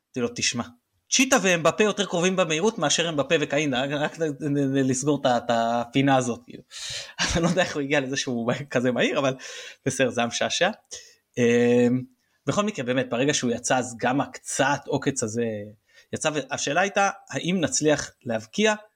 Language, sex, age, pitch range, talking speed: Hebrew, male, 20-39, 120-170 Hz, 150 wpm